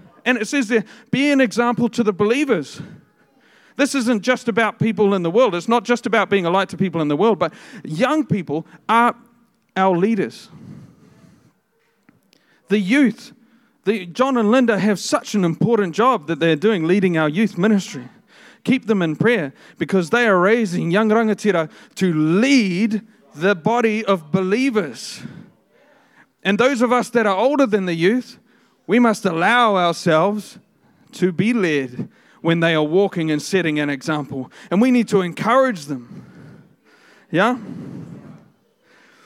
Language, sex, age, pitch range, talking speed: English, male, 40-59, 175-235 Hz, 155 wpm